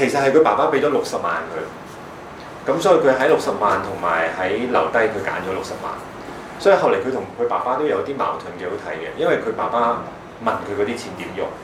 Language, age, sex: Chinese, 30-49, male